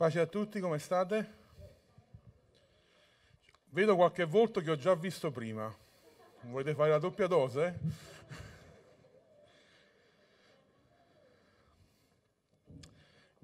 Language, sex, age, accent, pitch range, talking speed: Italian, male, 30-49, native, 115-160 Hz, 85 wpm